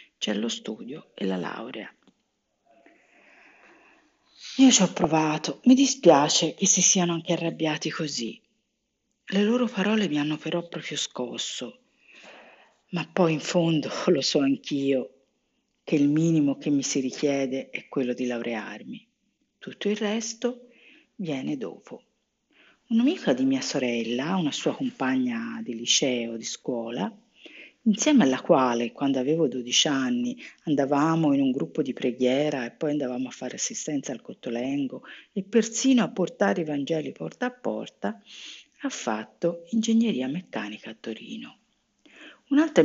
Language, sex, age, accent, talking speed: Italian, female, 40-59, native, 135 wpm